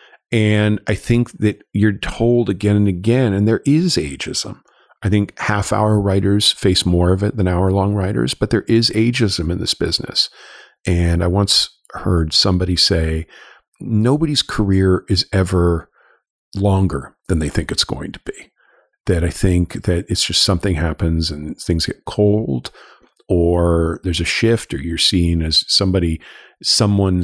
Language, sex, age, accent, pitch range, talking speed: English, male, 50-69, American, 85-105 Hz, 155 wpm